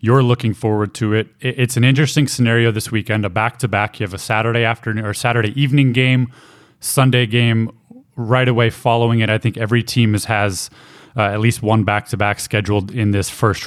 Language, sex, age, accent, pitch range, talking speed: English, male, 20-39, American, 105-125 Hz, 185 wpm